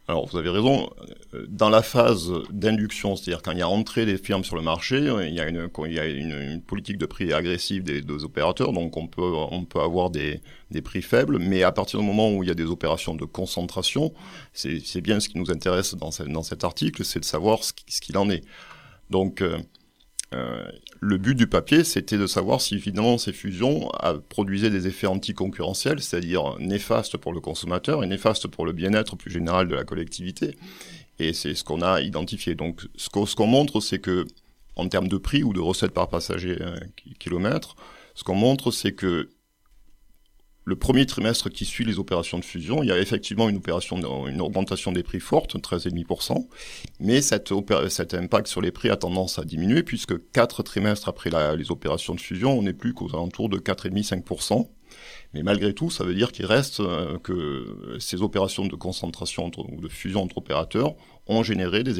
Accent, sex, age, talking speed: French, male, 50-69, 195 wpm